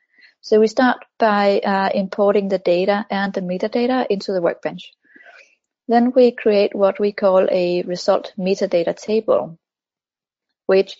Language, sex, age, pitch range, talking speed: English, female, 30-49, 190-220 Hz, 135 wpm